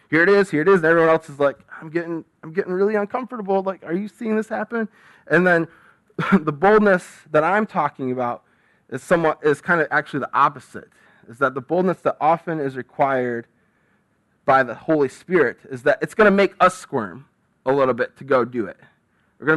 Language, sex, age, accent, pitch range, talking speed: English, male, 20-39, American, 125-165 Hz, 210 wpm